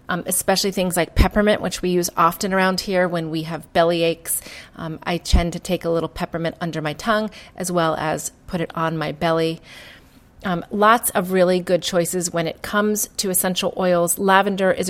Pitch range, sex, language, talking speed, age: 165-195 Hz, female, English, 195 wpm, 30-49